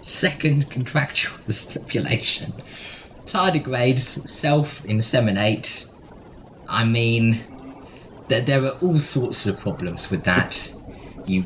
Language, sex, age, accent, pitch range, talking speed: English, male, 20-39, British, 110-155 Hz, 85 wpm